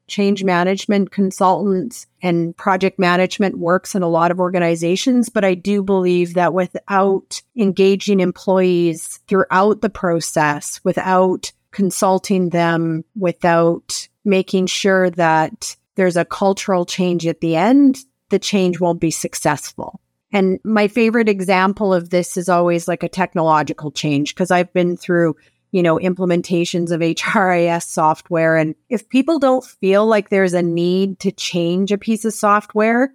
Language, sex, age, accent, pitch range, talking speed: English, female, 30-49, American, 175-205 Hz, 145 wpm